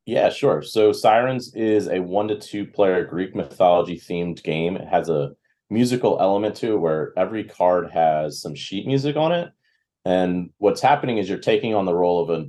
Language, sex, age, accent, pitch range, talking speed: English, male, 30-49, American, 85-110 Hz, 195 wpm